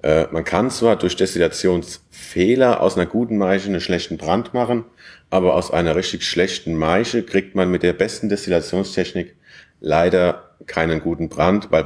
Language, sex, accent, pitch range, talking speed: German, male, German, 85-100 Hz, 150 wpm